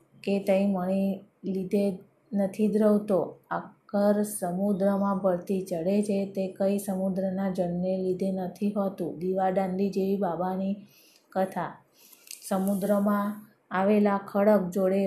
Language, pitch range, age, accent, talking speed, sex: Gujarati, 190-205 Hz, 20-39, native, 105 wpm, female